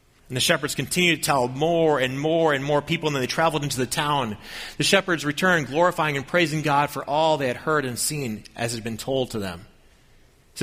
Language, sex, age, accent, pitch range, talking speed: English, male, 30-49, American, 105-155 Hz, 230 wpm